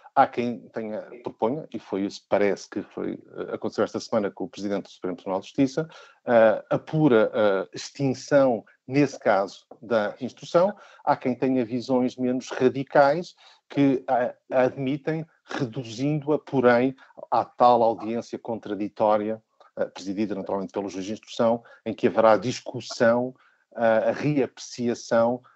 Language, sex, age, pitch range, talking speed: Portuguese, male, 50-69, 115-140 Hz, 145 wpm